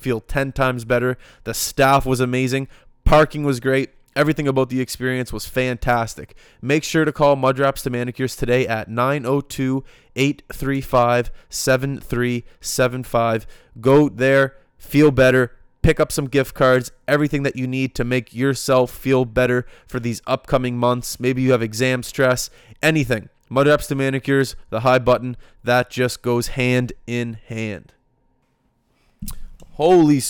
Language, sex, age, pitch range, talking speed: English, male, 20-39, 120-140 Hz, 135 wpm